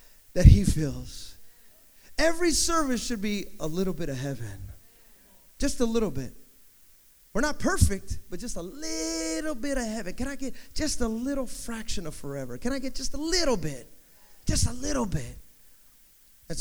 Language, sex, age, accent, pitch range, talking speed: English, male, 30-49, American, 130-190 Hz, 170 wpm